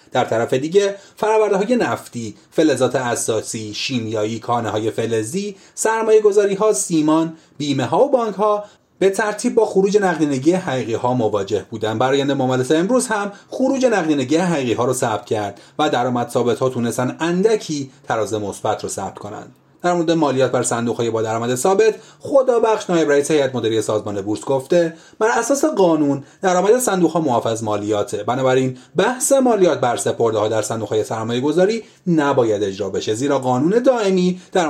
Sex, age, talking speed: male, 30-49, 160 wpm